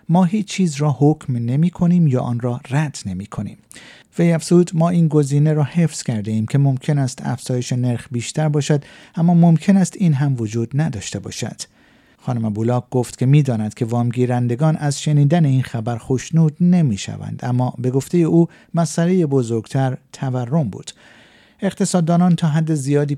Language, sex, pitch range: Persian, male, 120-160 Hz